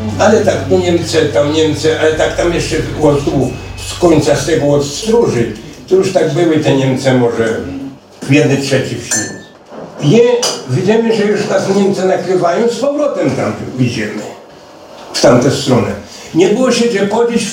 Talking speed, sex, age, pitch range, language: 160 wpm, male, 60-79, 130-195 Hz, Polish